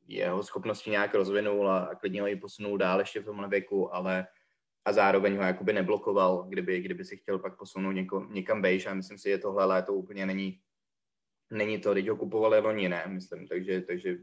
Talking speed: 200 wpm